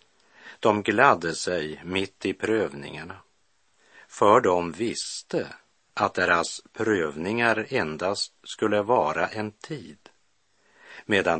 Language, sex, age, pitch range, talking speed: Swedish, male, 50-69, 85-105 Hz, 95 wpm